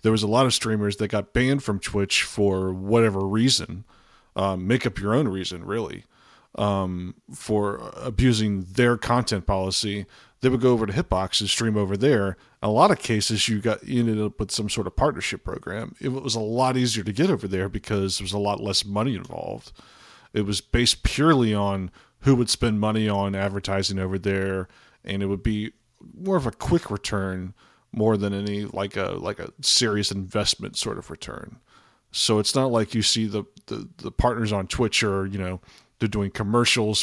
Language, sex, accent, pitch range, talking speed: English, male, American, 100-120 Hz, 200 wpm